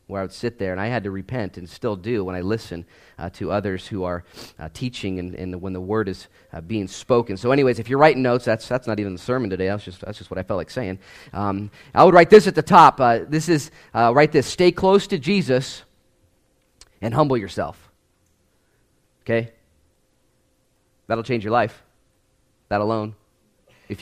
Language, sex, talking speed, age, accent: English, male, 210 wpm, 30-49, American